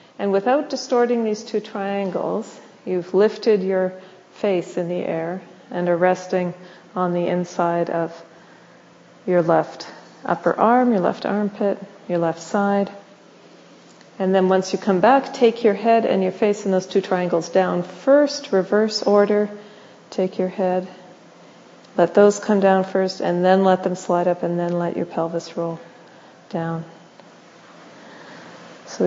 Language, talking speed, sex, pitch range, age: English, 150 wpm, female, 175-205 Hz, 40-59